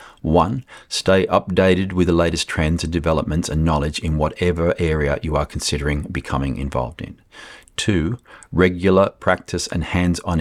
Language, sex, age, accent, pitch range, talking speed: English, male, 40-59, Australian, 75-90 Hz, 145 wpm